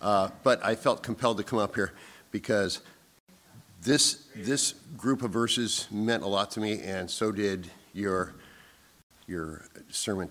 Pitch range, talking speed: 85-105 Hz, 150 wpm